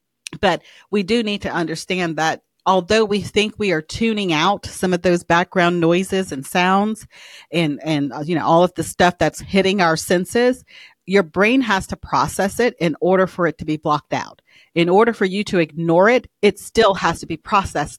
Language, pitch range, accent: English, 155-195 Hz, American